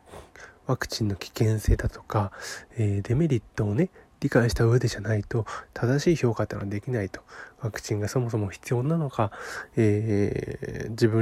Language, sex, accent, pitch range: Japanese, male, native, 110-155 Hz